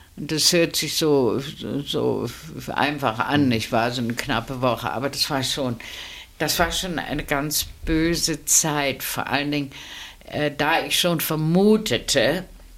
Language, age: German, 60-79